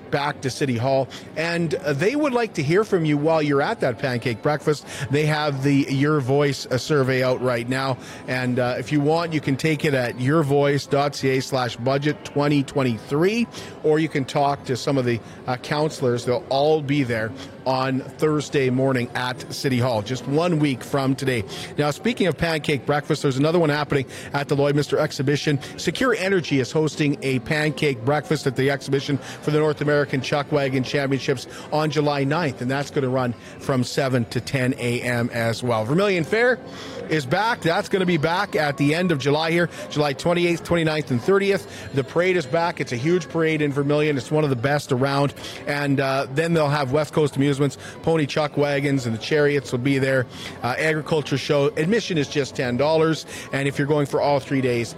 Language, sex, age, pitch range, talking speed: English, male, 40-59, 130-155 Hz, 195 wpm